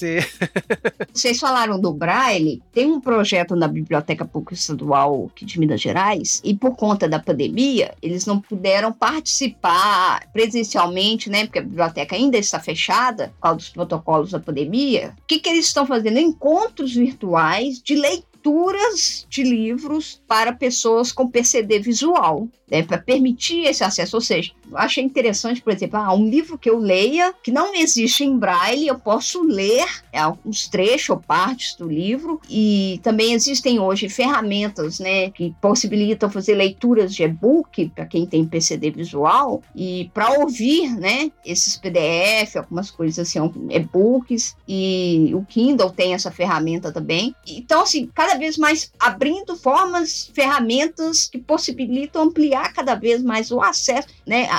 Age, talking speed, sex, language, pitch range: 50-69, 150 wpm, female, Portuguese, 185-275 Hz